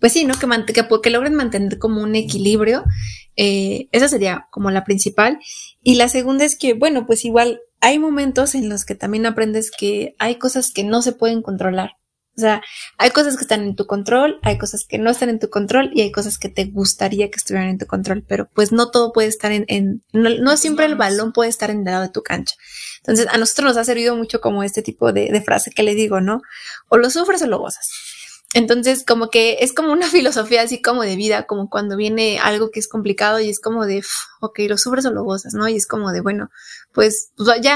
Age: 20-39